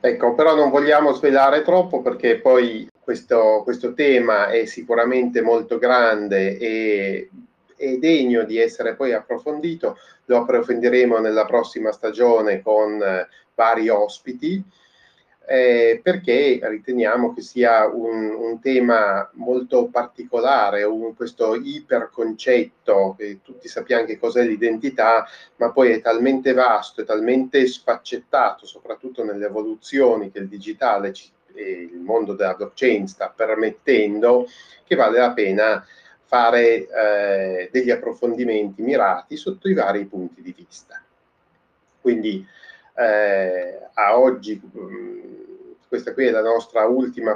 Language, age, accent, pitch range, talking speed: Italian, 30-49, native, 110-140 Hz, 125 wpm